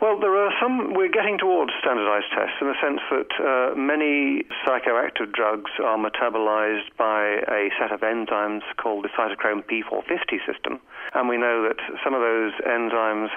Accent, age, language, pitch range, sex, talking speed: British, 40-59, English, 105-135 Hz, male, 165 wpm